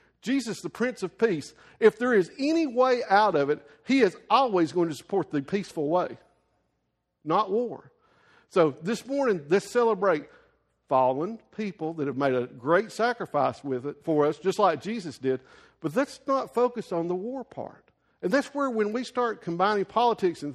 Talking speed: 180 wpm